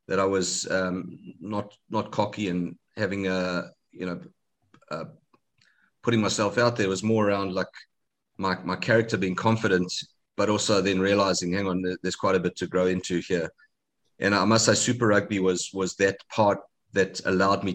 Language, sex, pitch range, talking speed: English, male, 95-120 Hz, 185 wpm